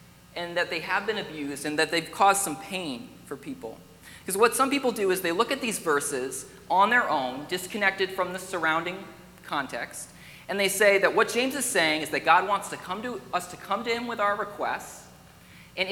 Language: English